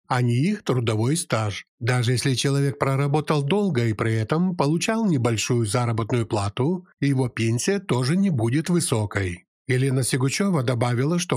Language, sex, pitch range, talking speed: Ukrainian, male, 115-170 Hz, 145 wpm